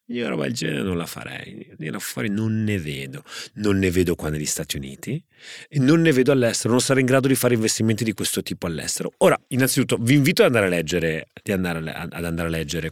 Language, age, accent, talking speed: Italian, 30-49, native, 215 wpm